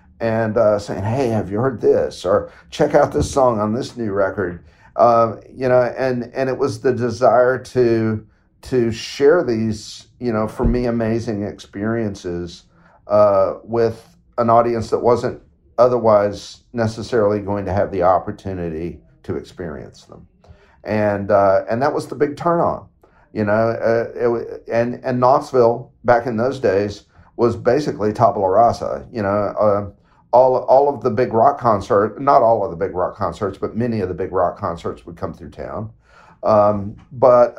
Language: English